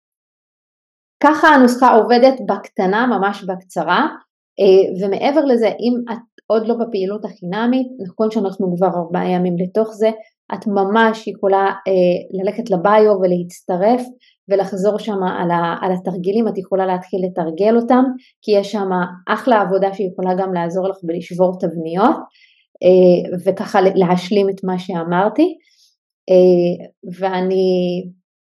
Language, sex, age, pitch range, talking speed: Hebrew, female, 30-49, 185-225 Hz, 110 wpm